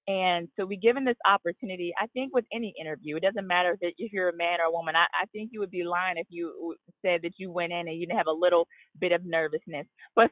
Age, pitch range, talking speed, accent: 30-49, 170-220 Hz, 260 wpm, American